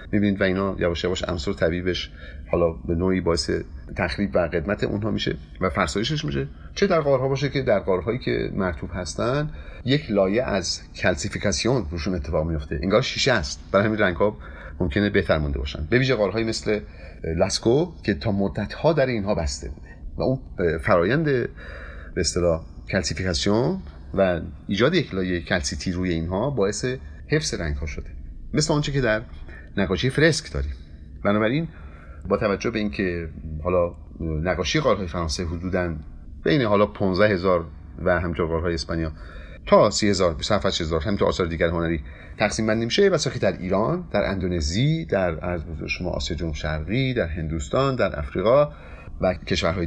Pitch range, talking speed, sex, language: 80-105 Hz, 155 wpm, male, Persian